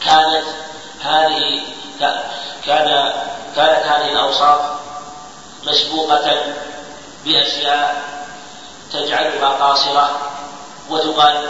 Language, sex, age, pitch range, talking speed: Arabic, male, 40-59, 145-155 Hz, 55 wpm